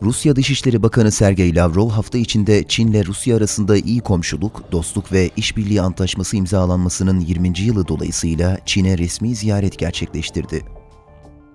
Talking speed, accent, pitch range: 130 wpm, native, 90-115 Hz